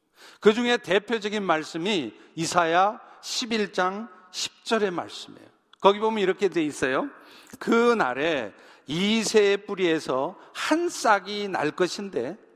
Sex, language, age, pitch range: male, Korean, 50-69, 185-245 Hz